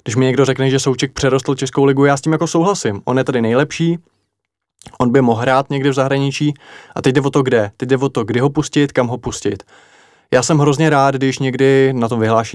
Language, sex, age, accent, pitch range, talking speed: Czech, male, 20-39, native, 120-135 Hz, 240 wpm